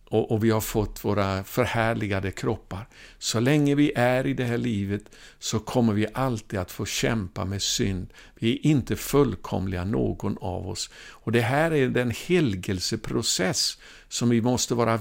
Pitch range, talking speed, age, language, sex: 100-135 Hz, 165 wpm, 60-79, Swedish, male